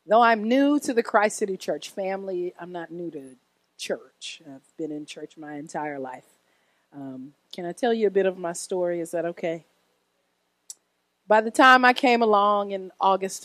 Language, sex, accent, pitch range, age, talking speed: English, female, American, 165-230 Hz, 40-59, 185 wpm